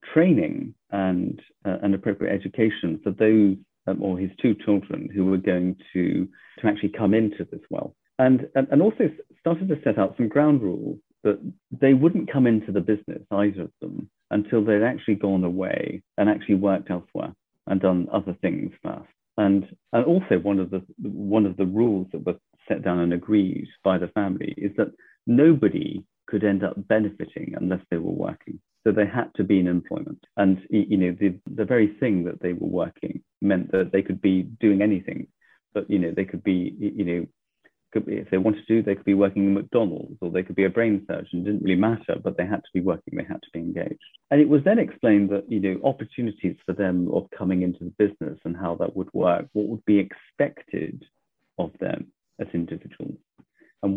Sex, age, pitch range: male, 40-59, 95-110 Hz